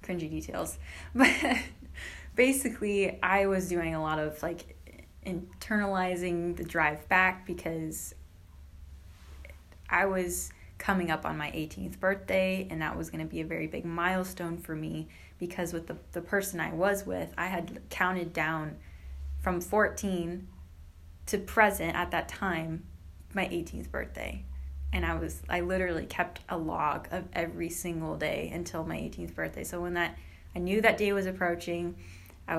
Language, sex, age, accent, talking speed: English, female, 20-39, American, 155 wpm